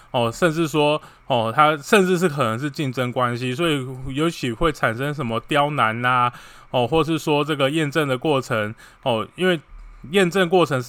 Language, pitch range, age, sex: Chinese, 120-155 Hz, 20-39, male